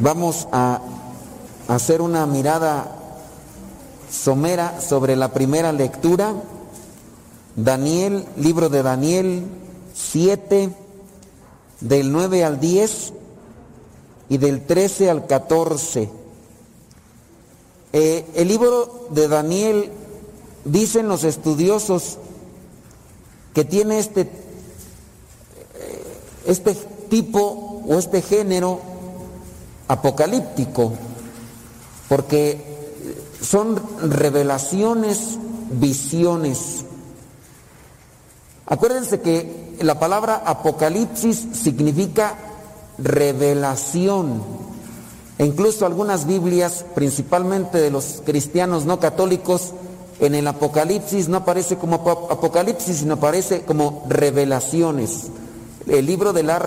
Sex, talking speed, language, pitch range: male, 80 wpm, Spanish, 140-190 Hz